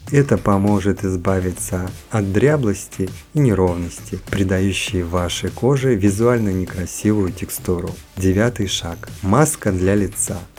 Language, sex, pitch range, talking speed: Russian, male, 95-115 Hz, 100 wpm